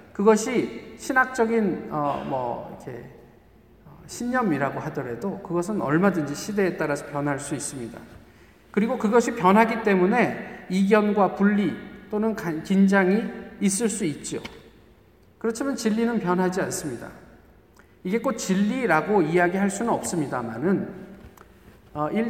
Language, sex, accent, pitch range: Korean, male, native, 170-225 Hz